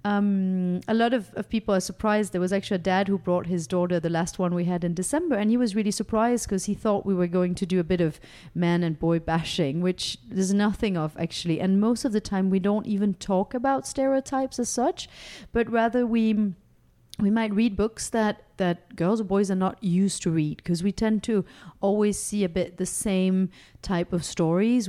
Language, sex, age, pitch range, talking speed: English, female, 30-49, 175-215 Hz, 220 wpm